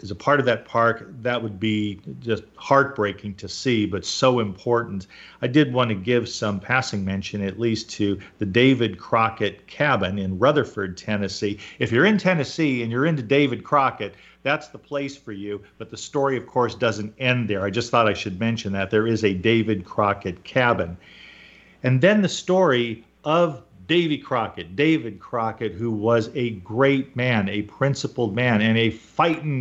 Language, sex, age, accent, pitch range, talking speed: English, male, 50-69, American, 105-135 Hz, 180 wpm